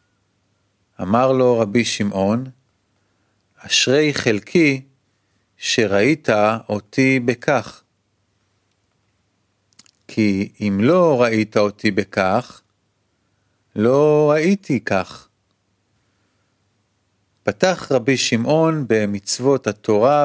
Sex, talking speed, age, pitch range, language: male, 70 wpm, 40-59, 100-140 Hz, Hebrew